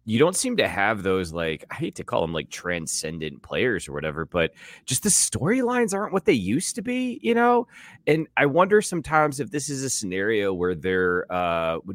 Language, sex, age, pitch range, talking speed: English, male, 30-49, 90-145 Hz, 215 wpm